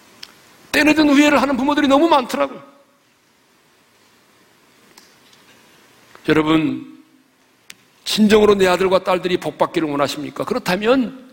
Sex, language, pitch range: male, Korean, 185-260 Hz